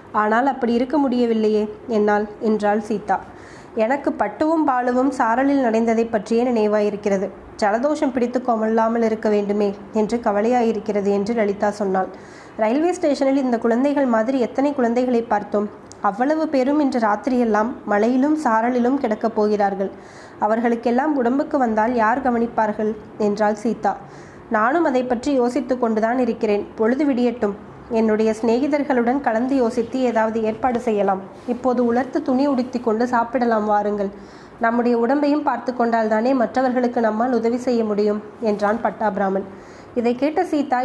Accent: native